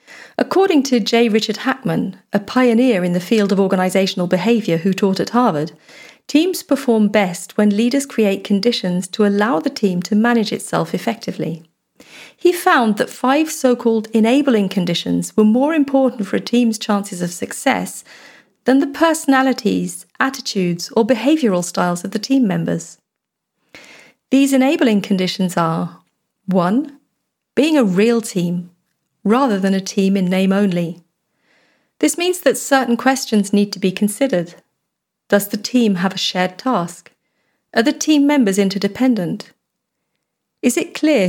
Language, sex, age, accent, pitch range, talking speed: German, female, 40-59, British, 190-255 Hz, 145 wpm